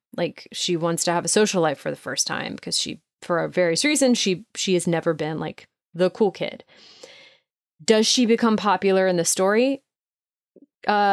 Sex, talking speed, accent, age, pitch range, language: female, 185 wpm, American, 20-39, 175-225 Hz, English